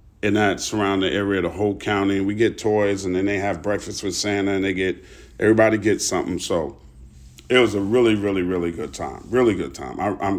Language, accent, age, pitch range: English, American, 40-59, 90-115 Hz